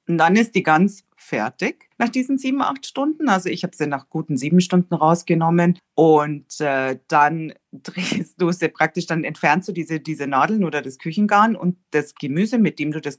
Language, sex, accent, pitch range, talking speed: German, female, German, 145-190 Hz, 190 wpm